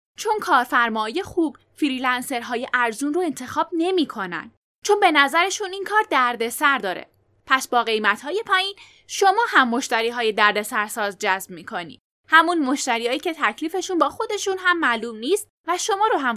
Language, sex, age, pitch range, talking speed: Persian, female, 10-29, 235-360 Hz, 155 wpm